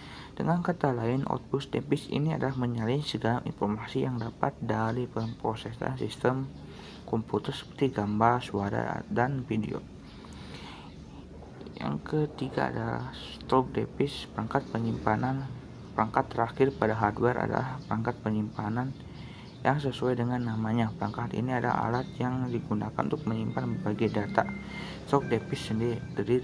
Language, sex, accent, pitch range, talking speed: Indonesian, male, native, 110-135 Hz, 120 wpm